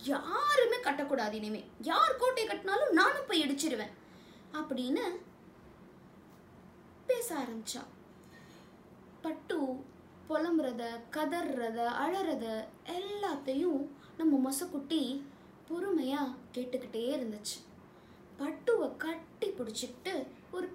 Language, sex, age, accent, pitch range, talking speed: Tamil, female, 20-39, native, 245-365 Hz, 55 wpm